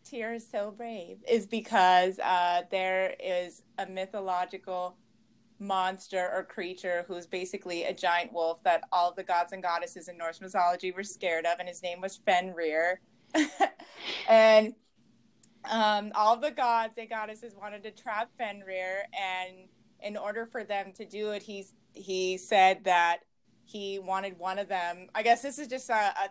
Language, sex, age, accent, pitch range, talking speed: English, female, 20-39, American, 185-220 Hz, 160 wpm